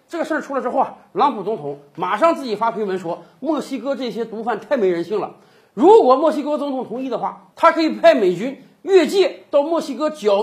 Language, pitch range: Chinese, 205-305 Hz